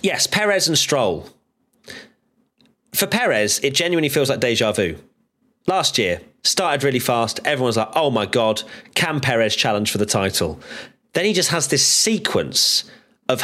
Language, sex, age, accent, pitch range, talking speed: English, male, 30-49, British, 110-160 Hz, 155 wpm